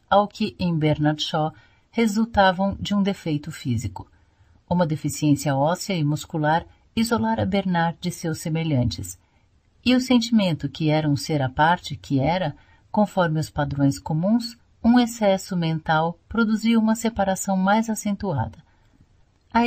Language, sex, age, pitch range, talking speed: Portuguese, female, 50-69, 145-205 Hz, 135 wpm